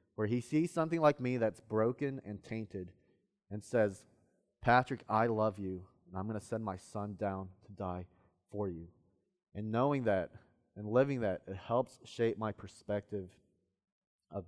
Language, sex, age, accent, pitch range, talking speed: English, male, 30-49, American, 95-120 Hz, 165 wpm